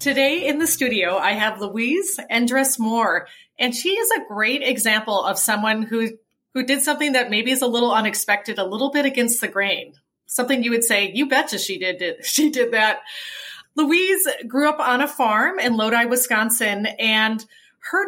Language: English